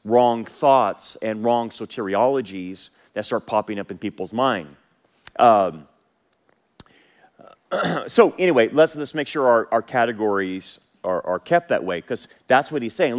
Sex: male